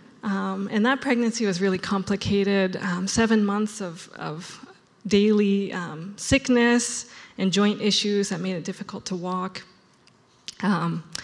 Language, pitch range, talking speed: English, 195-235 Hz, 135 wpm